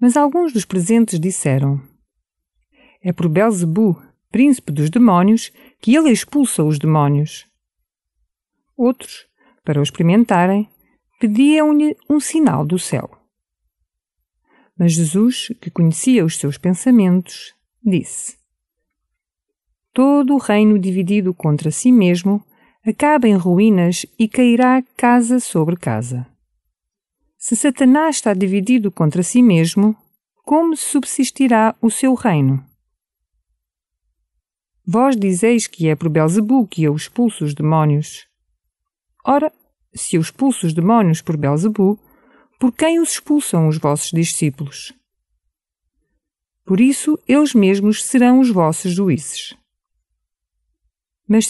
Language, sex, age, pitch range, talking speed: Portuguese, female, 50-69, 155-250 Hz, 110 wpm